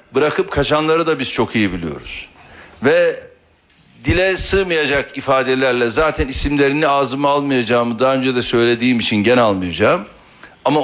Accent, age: native, 60-79